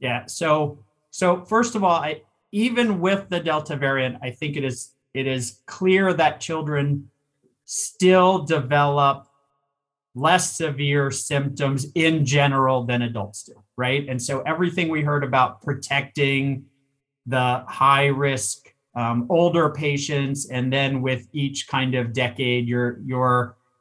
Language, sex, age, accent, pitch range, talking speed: English, male, 30-49, American, 125-150 Hz, 135 wpm